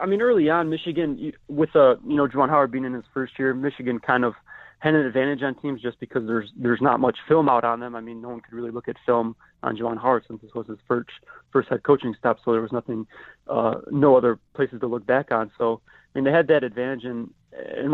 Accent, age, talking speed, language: American, 30-49, 255 wpm, English